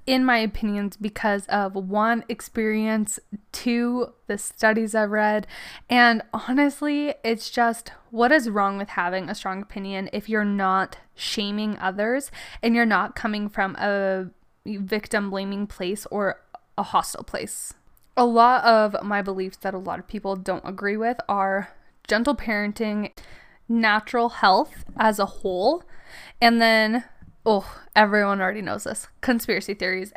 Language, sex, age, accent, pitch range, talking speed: English, female, 10-29, American, 200-230 Hz, 145 wpm